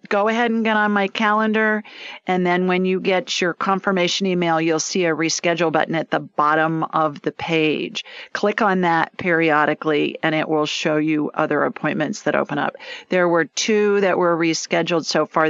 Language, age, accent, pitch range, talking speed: English, 40-59, American, 160-215 Hz, 185 wpm